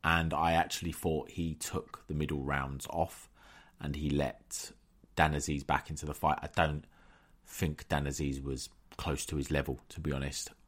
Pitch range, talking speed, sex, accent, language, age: 75-110 Hz, 175 wpm, male, British, English, 30-49